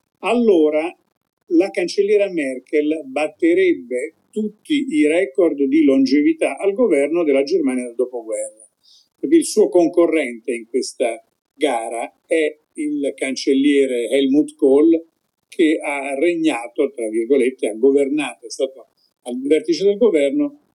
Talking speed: 115 wpm